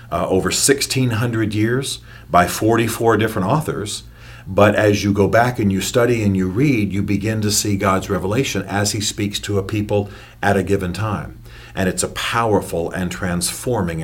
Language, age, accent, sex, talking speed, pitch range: English, 40-59, American, male, 175 wpm, 95-120 Hz